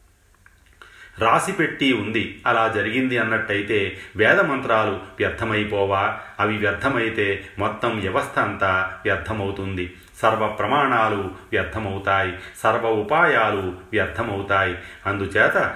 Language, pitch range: Telugu, 95-120 Hz